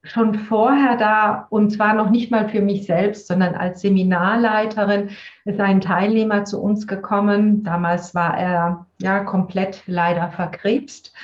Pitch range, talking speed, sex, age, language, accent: 185-230 Hz, 145 wpm, female, 40-59, German, German